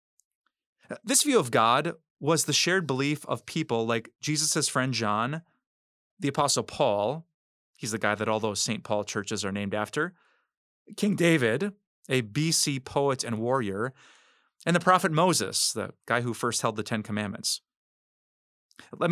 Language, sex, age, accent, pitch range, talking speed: English, male, 30-49, American, 115-165 Hz, 155 wpm